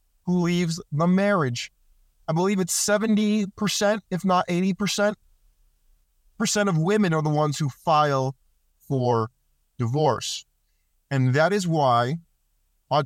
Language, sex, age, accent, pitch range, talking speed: English, male, 30-49, American, 145-195 Hz, 120 wpm